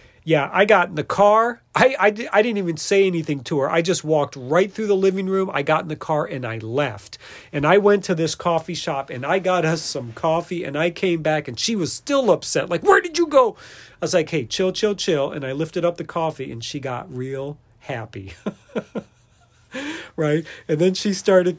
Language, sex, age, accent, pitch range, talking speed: English, male, 40-59, American, 140-190 Hz, 225 wpm